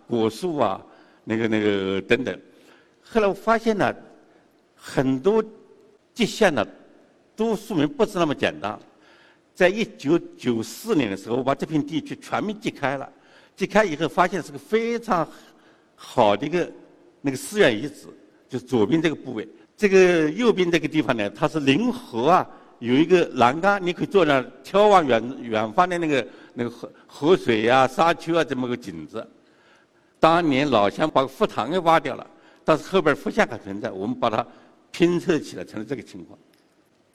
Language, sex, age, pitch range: Chinese, male, 60-79, 140-210 Hz